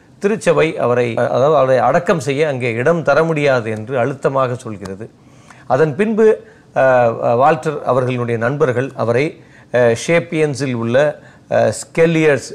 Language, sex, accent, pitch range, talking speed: Tamil, male, native, 120-150 Hz, 105 wpm